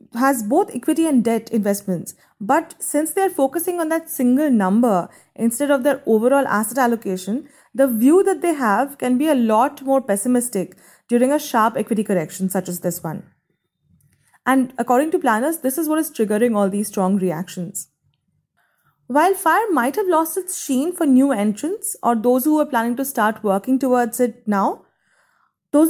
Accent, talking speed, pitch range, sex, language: Indian, 175 wpm, 215-300 Hz, female, English